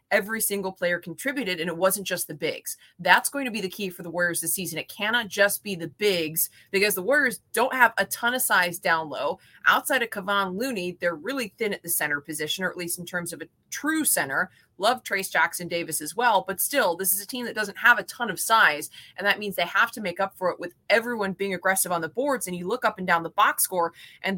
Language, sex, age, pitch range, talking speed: English, female, 20-39, 175-210 Hz, 255 wpm